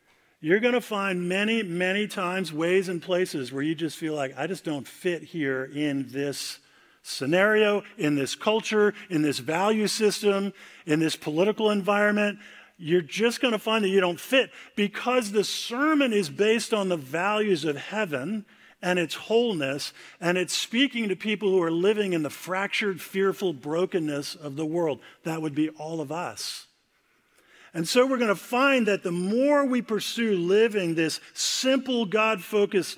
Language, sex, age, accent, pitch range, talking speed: English, male, 50-69, American, 175-235 Hz, 170 wpm